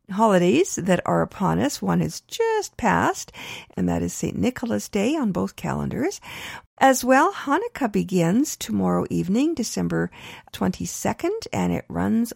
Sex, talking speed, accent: female, 140 wpm, American